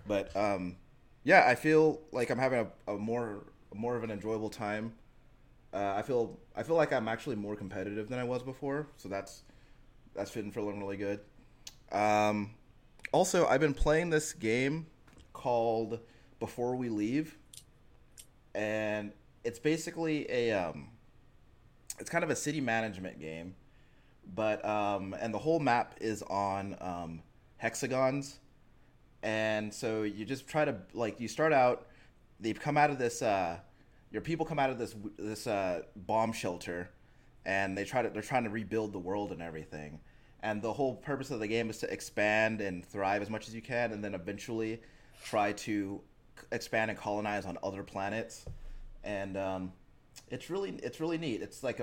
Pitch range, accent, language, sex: 100-130 Hz, American, English, male